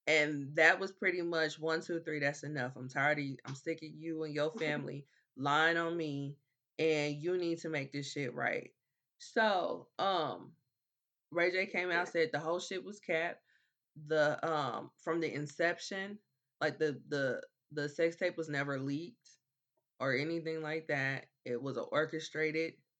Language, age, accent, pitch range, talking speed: English, 20-39, American, 140-160 Hz, 170 wpm